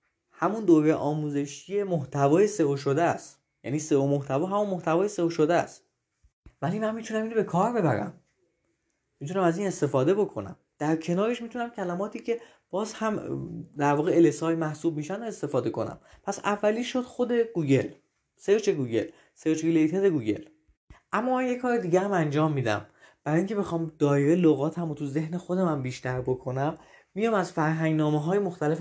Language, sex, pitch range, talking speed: Persian, male, 145-190 Hz, 160 wpm